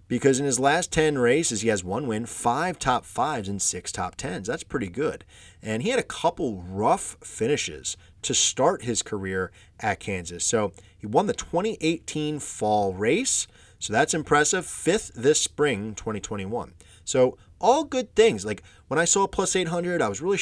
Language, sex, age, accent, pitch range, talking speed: English, male, 30-49, American, 100-150 Hz, 180 wpm